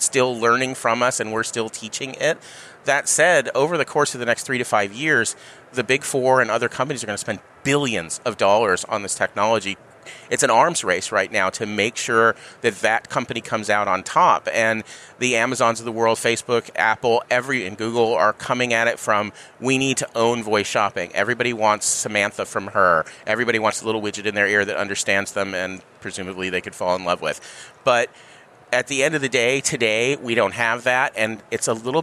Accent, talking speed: American, 215 wpm